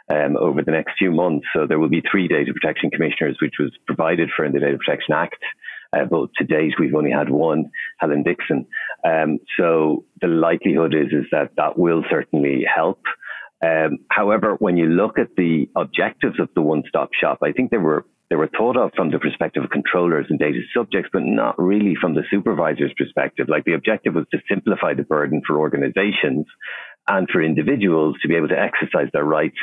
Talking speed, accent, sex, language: 200 wpm, Irish, male, English